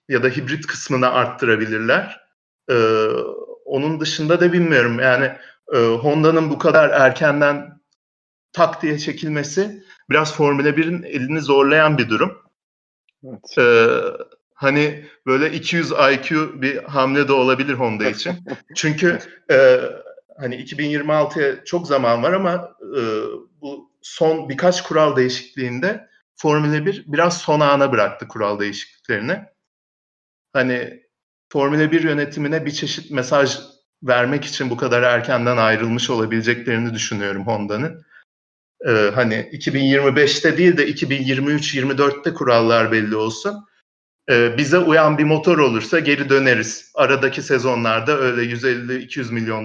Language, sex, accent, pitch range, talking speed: Turkish, male, native, 120-160 Hz, 120 wpm